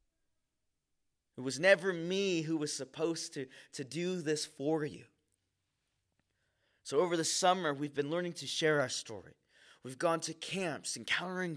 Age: 20-39